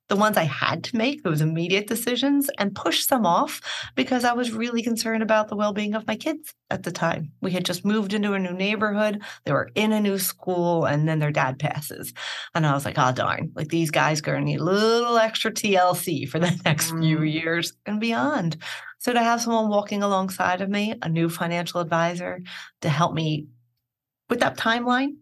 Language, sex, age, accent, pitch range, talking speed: English, female, 30-49, American, 150-205 Hz, 210 wpm